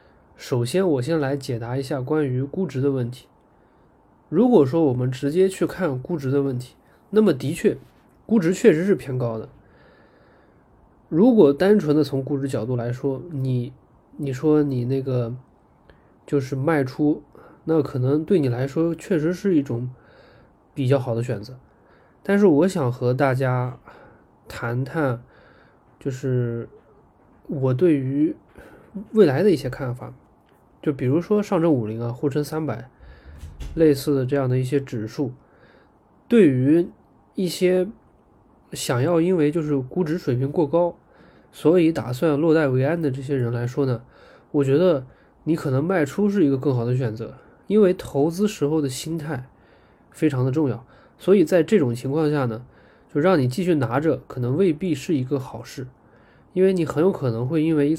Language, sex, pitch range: Chinese, male, 125-165 Hz